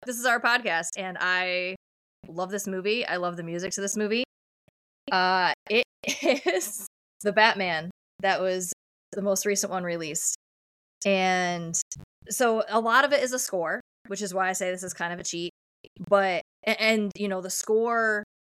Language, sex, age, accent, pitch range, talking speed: English, female, 20-39, American, 180-215 Hz, 175 wpm